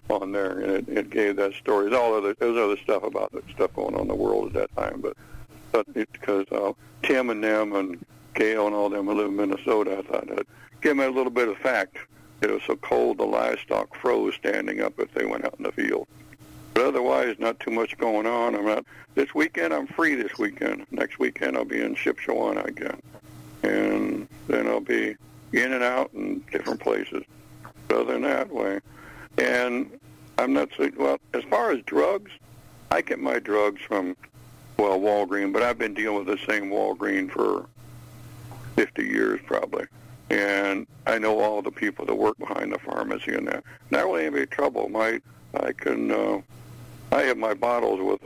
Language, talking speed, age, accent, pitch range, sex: English, 195 wpm, 60-79, American, 100-120 Hz, male